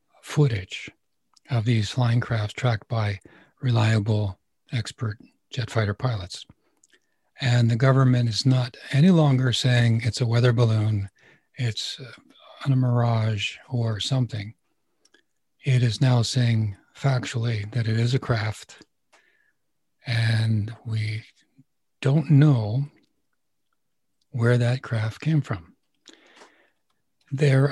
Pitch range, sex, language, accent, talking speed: 110-130 Hz, male, English, American, 110 wpm